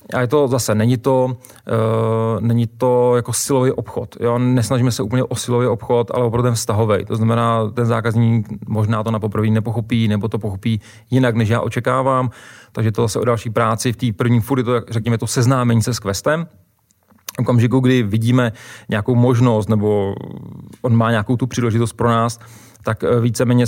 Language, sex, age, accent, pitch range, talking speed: Czech, male, 30-49, native, 110-120 Hz, 185 wpm